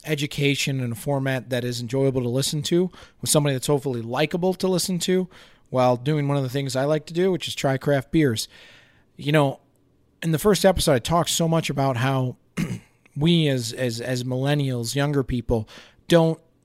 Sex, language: male, English